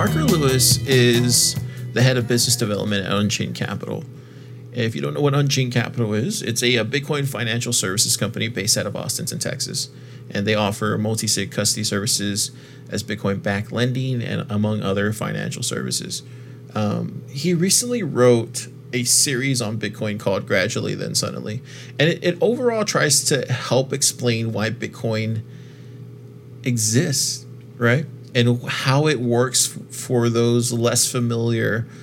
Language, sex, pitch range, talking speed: English, male, 115-135 Hz, 145 wpm